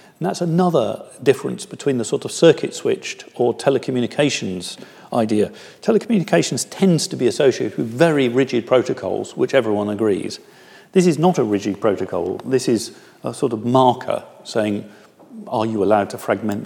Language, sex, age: English, male, 40-59